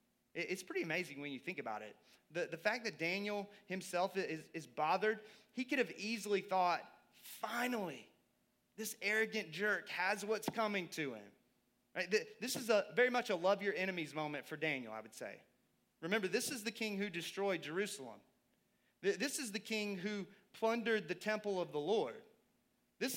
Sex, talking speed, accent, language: male, 175 wpm, American, English